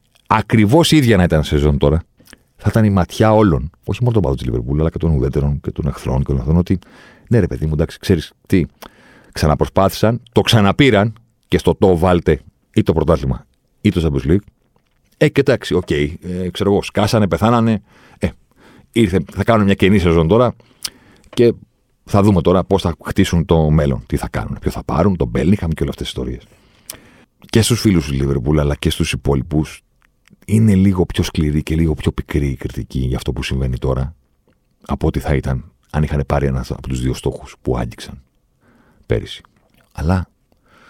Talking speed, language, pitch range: 190 wpm, Greek, 70-100 Hz